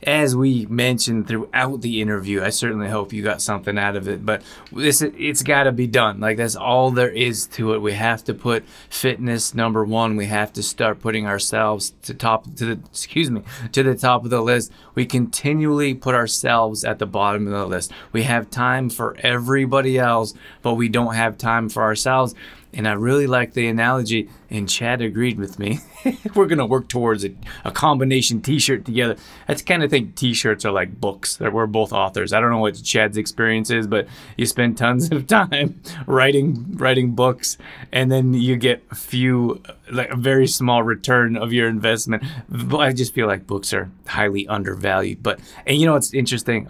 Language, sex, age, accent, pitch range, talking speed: English, male, 20-39, American, 110-130 Hz, 195 wpm